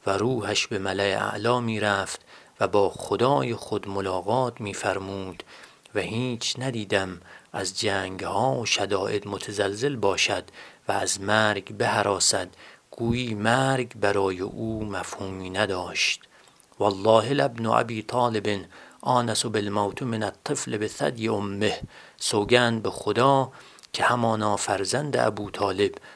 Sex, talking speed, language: male, 115 wpm, Persian